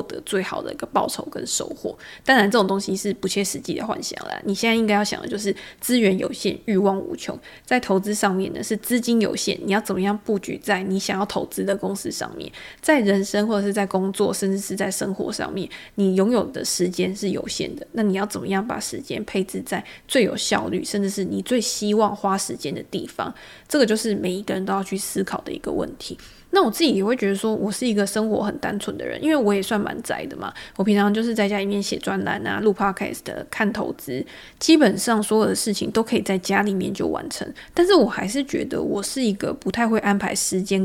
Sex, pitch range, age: female, 195-225 Hz, 20-39